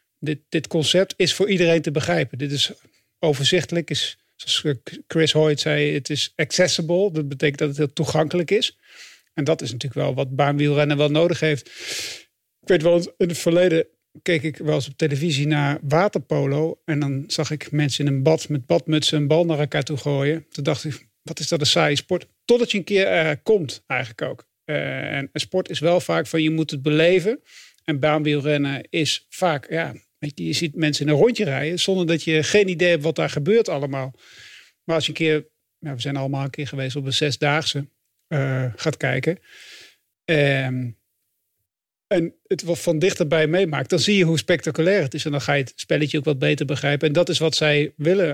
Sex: male